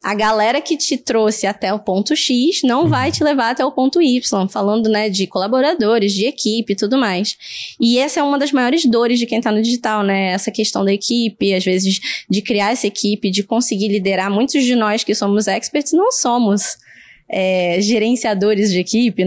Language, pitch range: Portuguese, 210-285 Hz